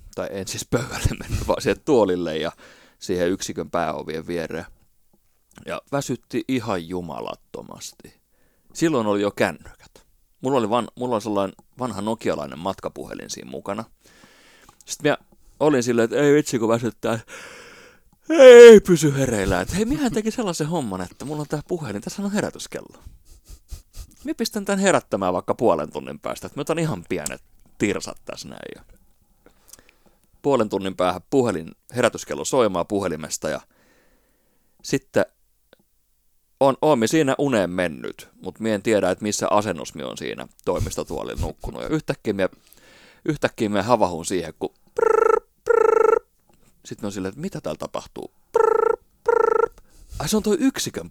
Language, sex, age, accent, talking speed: Finnish, male, 30-49, native, 135 wpm